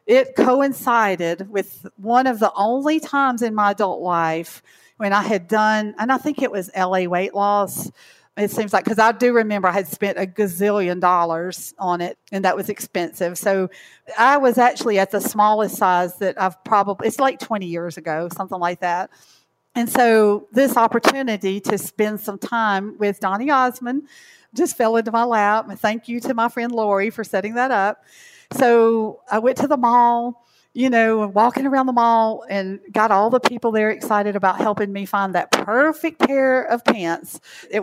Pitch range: 195-255 Hz